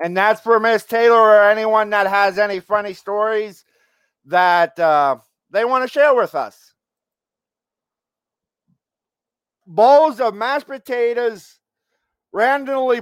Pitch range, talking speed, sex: 200-245 Hz, 115 wpm, male